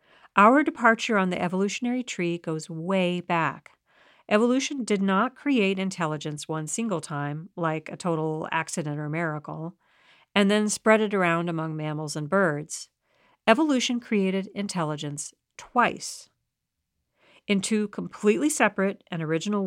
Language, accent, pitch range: English, American, 160-220 Hz